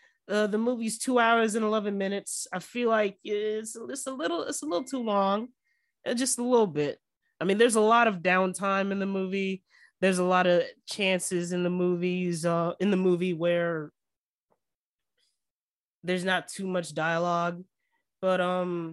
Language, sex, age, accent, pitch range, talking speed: English, male, 20-39, American, 160-195 Hz, 175 wpm